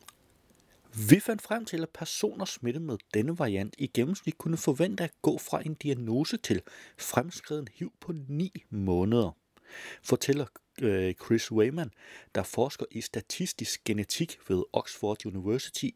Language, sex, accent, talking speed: Danish, male, native, 135 wpm